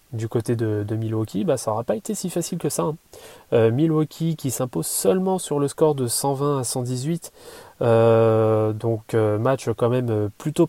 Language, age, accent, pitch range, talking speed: French, 20-39, French, 115-140 Hz, 180 wpm